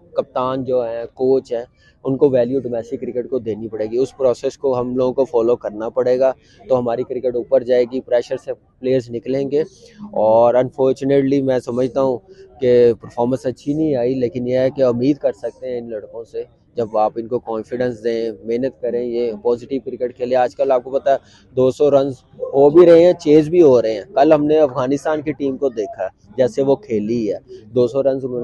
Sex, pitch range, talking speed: male, 125-145 Hz, 205 wpm